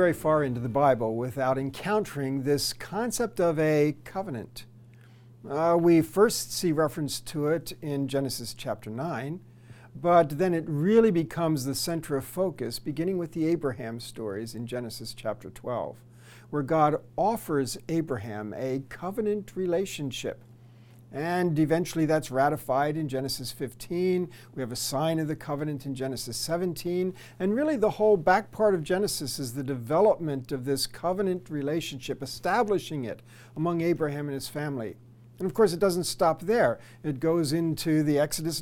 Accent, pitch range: American, 130-170 Hz